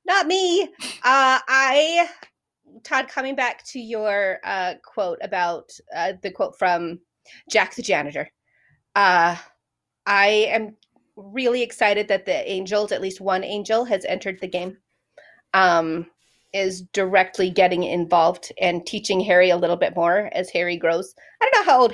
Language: English